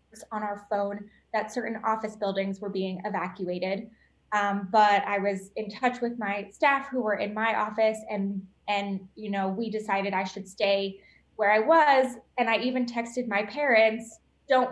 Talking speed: 175 wpm